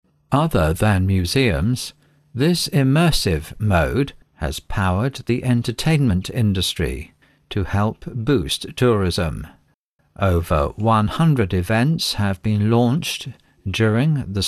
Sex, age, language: male, 60-79, English